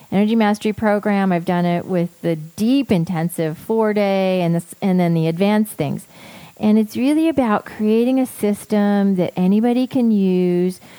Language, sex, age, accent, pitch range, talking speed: English, female, 40-59, American, 170-210 Hz, 165 wpm